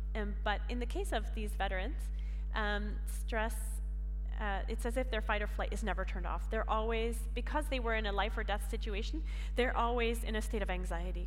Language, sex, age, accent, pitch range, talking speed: Finnish, female, 30-49, American, 190-235 Hz, 210 wpm